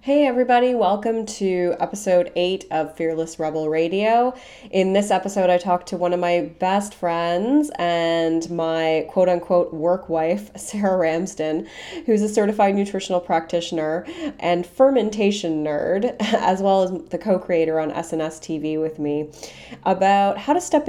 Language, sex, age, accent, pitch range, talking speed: English, female, 20-39, American, 160-210 Hz, 145 wpm